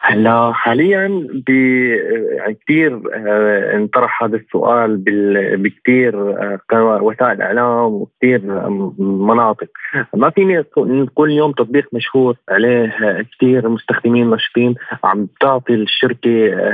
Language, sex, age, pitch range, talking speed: Arabic, male, 20-39, 115-145 Hz, 95 wpm